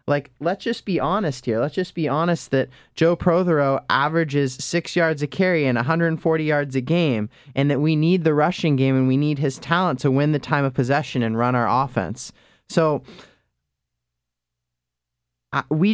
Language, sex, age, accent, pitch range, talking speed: English, male, 20-39, American, 120-160 Hz, 175 wpm